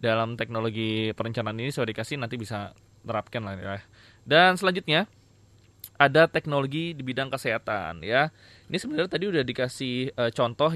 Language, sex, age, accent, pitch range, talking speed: Indonesian, male, 20-39, native, 115-145 Hz, 135 wpm